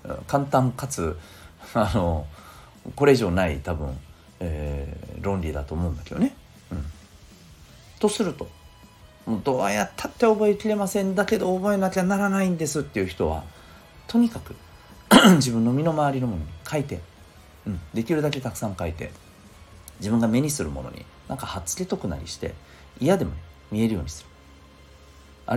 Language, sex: Japanese, male